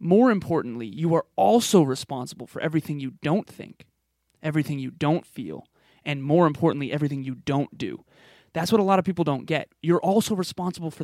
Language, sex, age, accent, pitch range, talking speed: English, male, 30-49, American, 135-165 Hz, 185 wpm